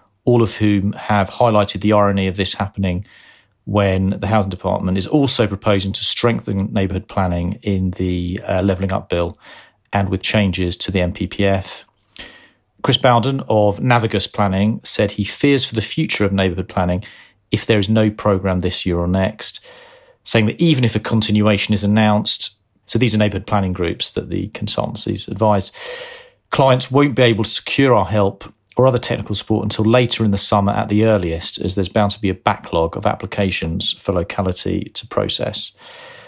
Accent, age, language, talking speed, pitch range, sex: British, 40-59, English, 175 wpm, 95-110 Hz, male